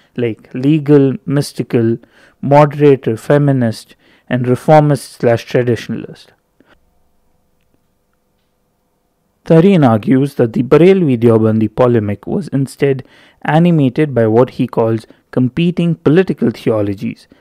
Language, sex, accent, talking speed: English, male, Indian, 85 wpm